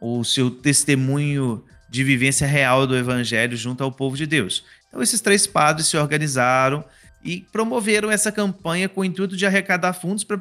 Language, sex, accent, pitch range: Portuguese, male, Brazilian, 130-185 Hz